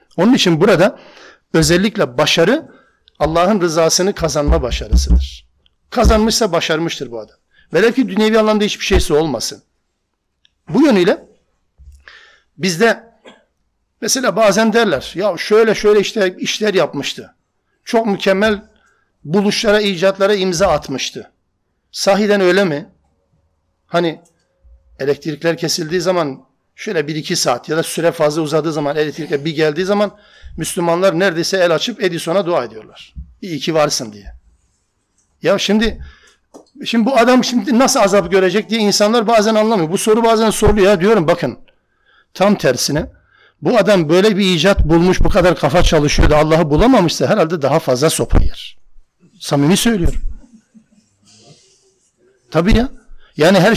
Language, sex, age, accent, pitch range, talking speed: Turkish, male, 60-79, native, 155-215 Hz, 130 wpm